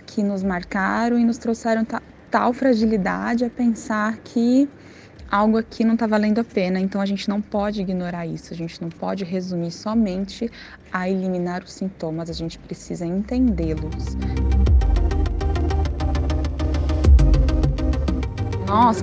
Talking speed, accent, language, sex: 125 wpm, Brazilian, Portuguese, female